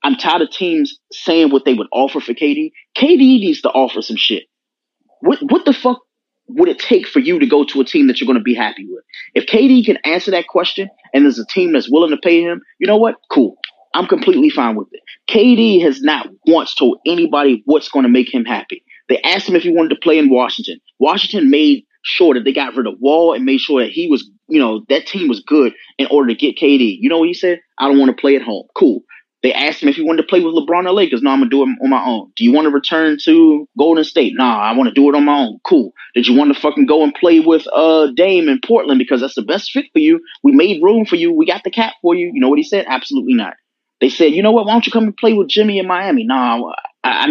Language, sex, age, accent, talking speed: English, male, 30-49, American, 275 wpm